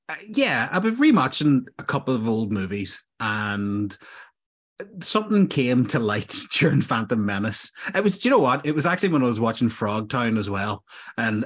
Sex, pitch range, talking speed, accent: male, 110-135 Hz, 185 wpm, Irish